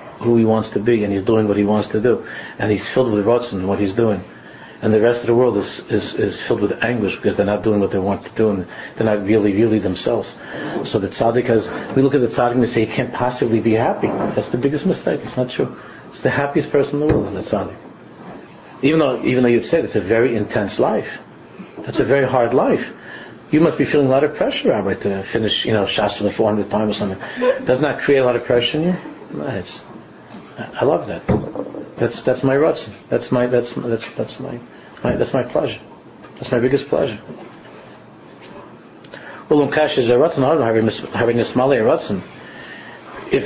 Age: 50-69